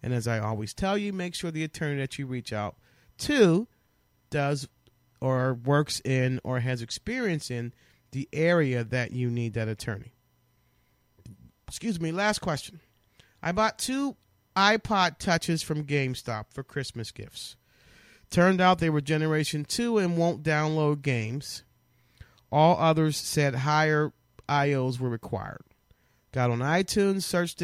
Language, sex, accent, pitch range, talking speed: English, male, American, 125-165 Hz, 140 wpm